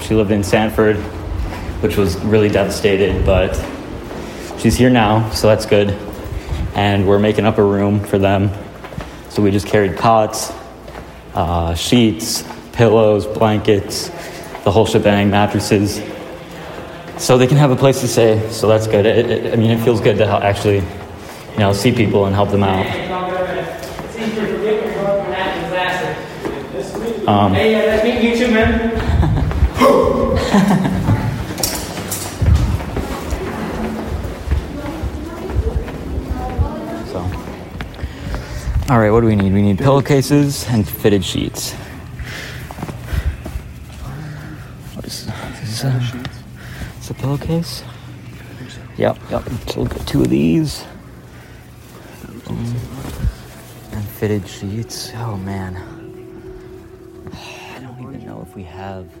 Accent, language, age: American, English, 20-39